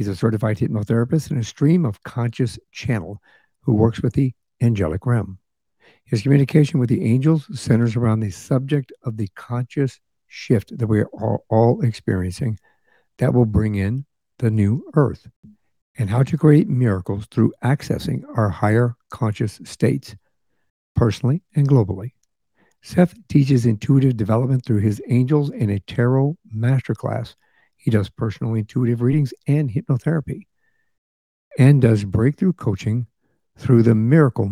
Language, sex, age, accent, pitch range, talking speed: English, male, 60-79, American, 110-135 Hz, 140 wpm